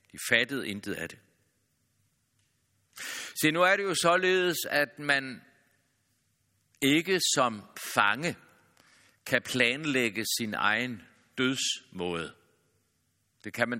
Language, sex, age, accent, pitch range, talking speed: Danish, male, 60-79, native, 115-155 Hz, 100 wpm